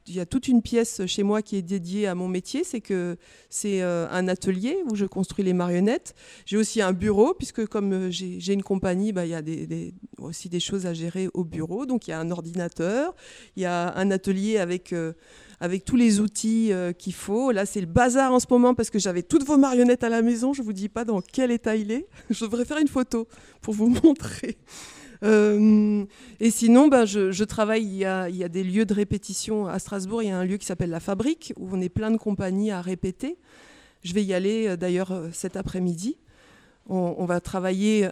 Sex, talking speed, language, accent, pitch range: female, 235 wpm, French, French, 180-230 Hz